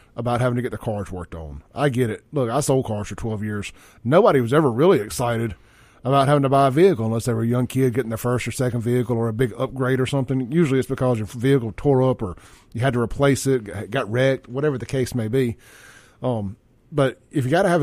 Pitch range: 115-135 Hz